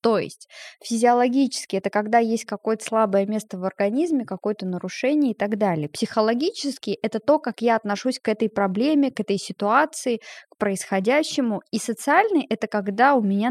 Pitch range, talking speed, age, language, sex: 200-255 Hz, 160 wpm, 20-39, Russian, female